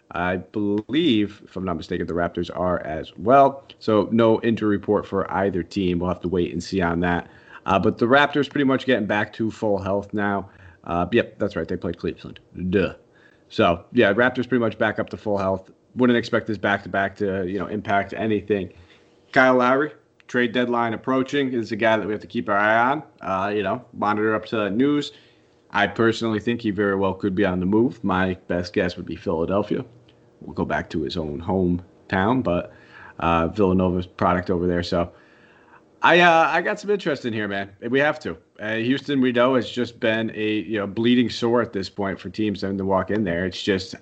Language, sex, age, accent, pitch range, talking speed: English, male, 30-49, American, 95-115 Hz, 210 wpm